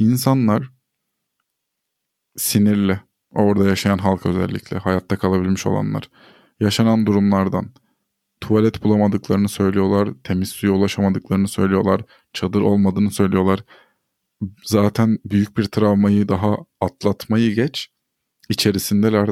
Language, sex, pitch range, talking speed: Turkish, male, 100-115 Hz, 90 wpm